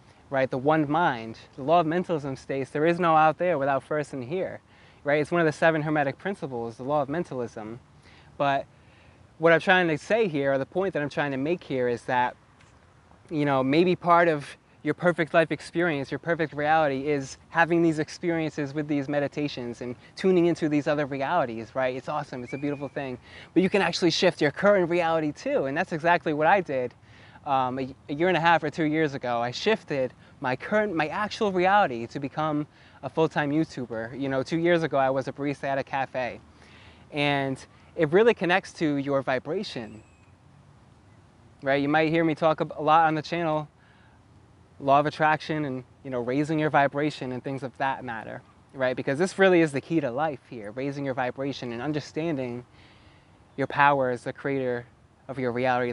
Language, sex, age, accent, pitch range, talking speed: English, male, 20-39, American, 125-160 Hz, 195 wpm